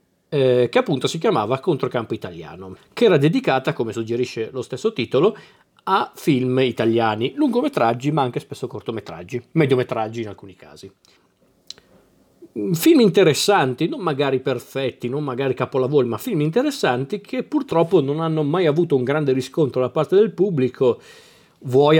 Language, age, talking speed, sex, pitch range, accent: Italian, 40-59, 140 wpm, male, 120-150 Hz, native